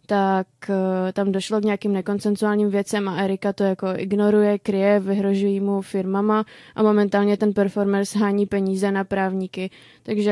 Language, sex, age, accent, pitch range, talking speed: Czech, female, 20-39, native, 195-210 Hz, 145 wpm